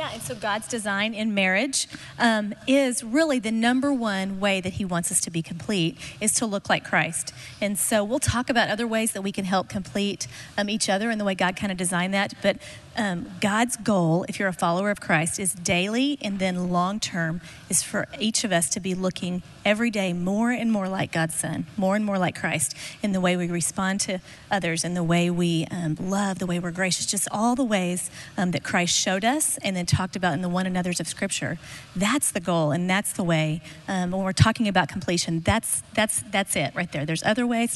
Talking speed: 225 wpm